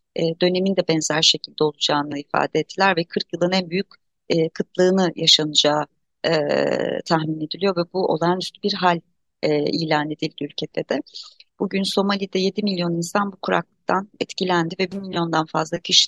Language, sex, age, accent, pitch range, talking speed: Turkish, female, 30-49, native, 170-195 Hz, 155 wpm